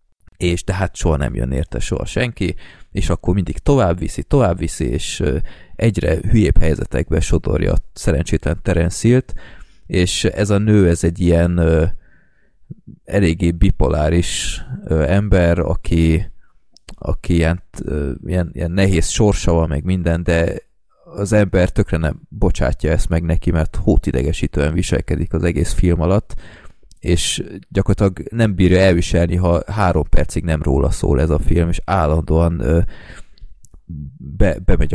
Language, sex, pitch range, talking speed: Hungarian, male, 80-100 Hz, 135 wpm